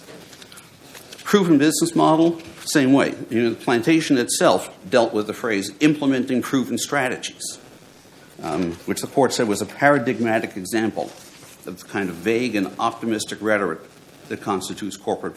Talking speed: 145 wpm